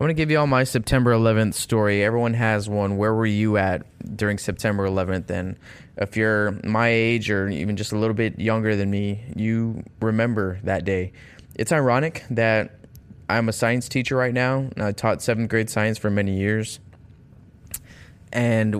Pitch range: 100-115 Hz